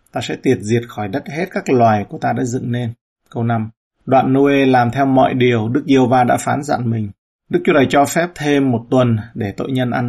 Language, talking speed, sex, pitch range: Vietnamese, 245 wpm, male, 115-135 Hz